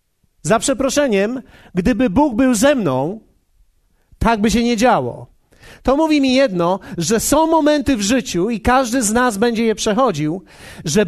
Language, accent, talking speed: Polish, native, 155 wpm